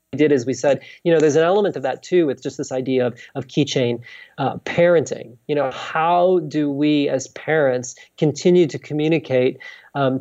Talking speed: 190 wpm